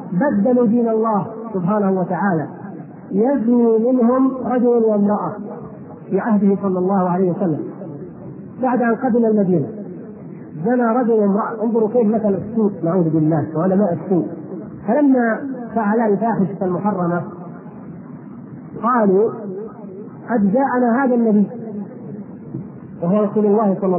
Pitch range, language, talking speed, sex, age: 195-235 Hz, Arabic, 105 wpm, male, 40-59